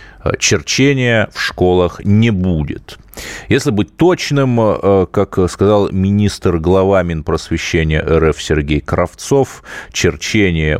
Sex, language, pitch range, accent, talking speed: male, Russian, 80-110 Hz, native, 90 wpm